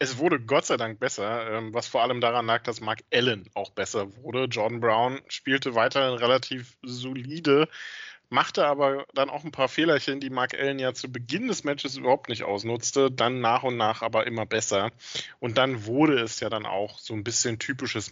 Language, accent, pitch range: German, German, 120-160 Hz